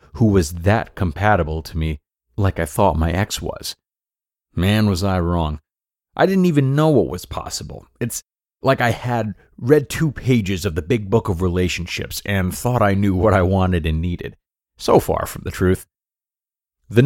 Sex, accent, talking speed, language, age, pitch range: male, American, 180 wpm, English, 30-49, 85-125 Hz